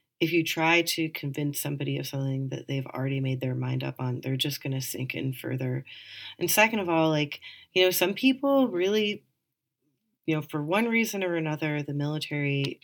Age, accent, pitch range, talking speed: 30-49, American, 135-160 Hz, 195 wpm